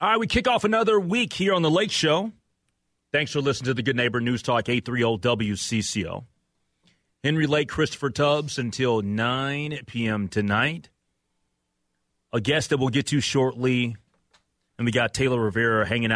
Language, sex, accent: English, male, American